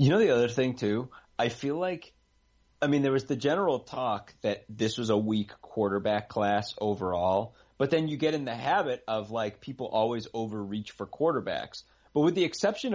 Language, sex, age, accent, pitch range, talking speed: English, male, 30-49, American, 100-135 Hz, 195 wpm